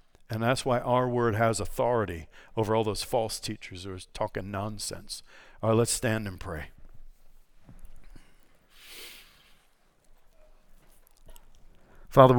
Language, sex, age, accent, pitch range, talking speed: English, male, 50-69, American, 120-145 Hz, 110 wpm